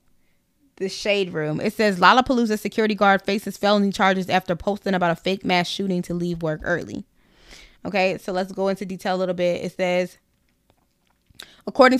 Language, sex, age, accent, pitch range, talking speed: English, female, 20-39, American, 175-210 Hz, 170 wpm